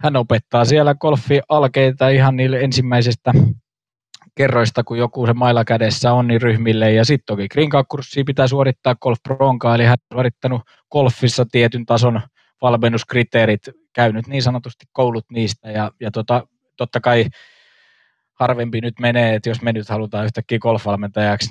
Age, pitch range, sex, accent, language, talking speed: 20-39, 110-130 Hz, male, native, Finnish, 140 wpm